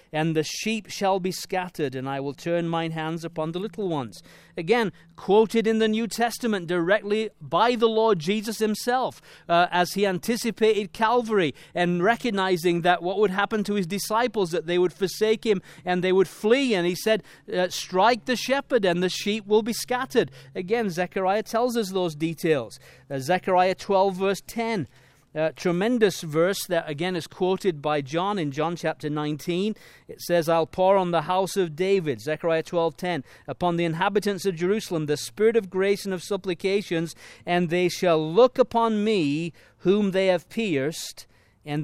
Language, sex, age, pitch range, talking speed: English, male, 40-59, 155-200 Hz, 175 wpm